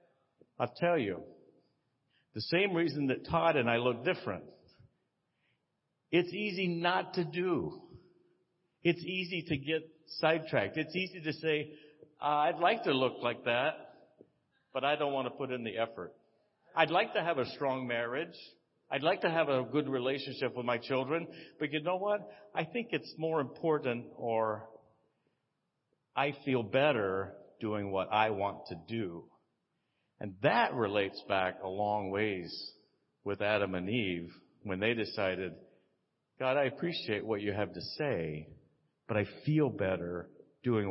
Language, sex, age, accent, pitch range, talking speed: English, male, 60-79, American, 105-150 Hz, 155 wpm